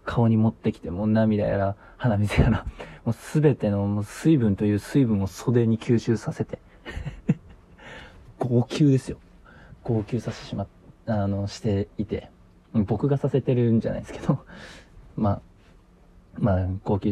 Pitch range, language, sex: 95-120 Hz, Japanese, male